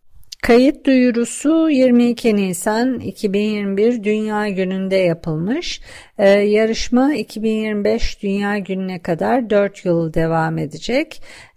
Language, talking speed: Turkish, 90 wpm